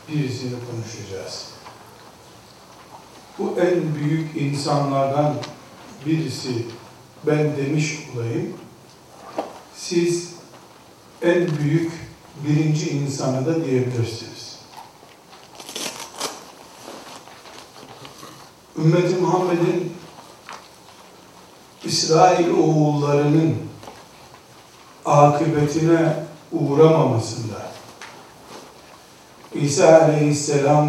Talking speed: 50 wpm